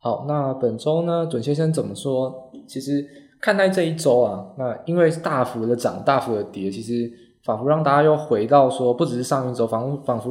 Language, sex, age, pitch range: Chinese, male, 20-39, 120-160 Hz